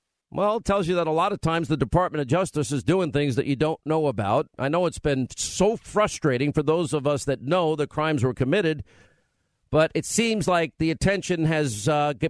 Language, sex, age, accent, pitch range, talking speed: English, male, 50-69, American, 135-170 Hz, 220 wpm